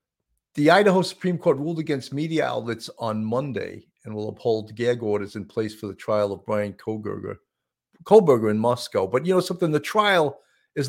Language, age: English, 50-69